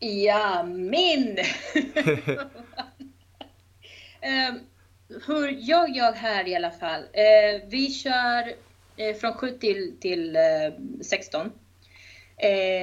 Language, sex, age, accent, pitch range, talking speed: Swedish, female, 30-49, native, 175-235 Hz, 75 wpm